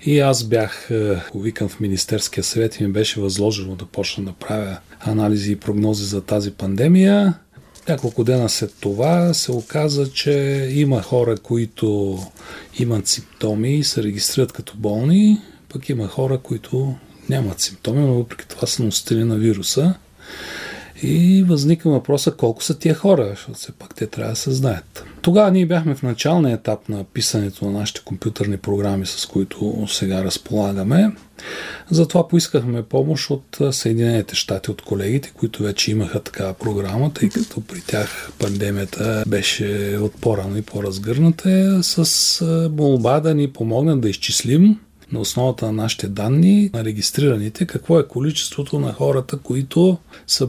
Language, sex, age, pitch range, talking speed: Bulgarian, male, 40-59, 105-145 Hz, 150 wpm